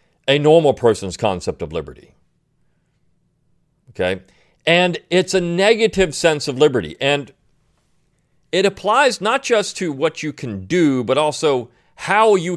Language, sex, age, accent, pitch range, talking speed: English, male, 40-59, American, 130-185 Hz, 135 wpm